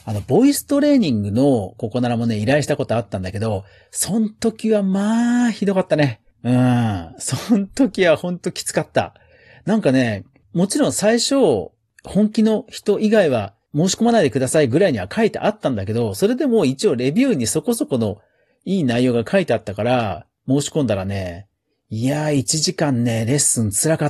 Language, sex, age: Japanese, male, 40-59